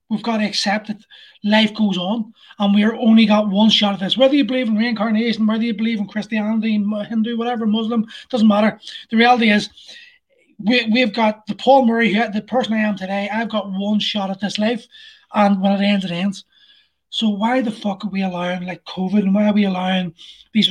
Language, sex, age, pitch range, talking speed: English, male, 20-39, 205-240 Hz, 215 wpm